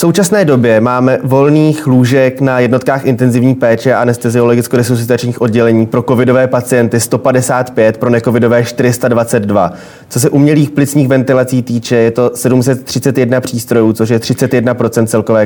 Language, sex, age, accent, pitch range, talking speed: Czech, male, 20-39, native, 115-130 Hz, 135 wpm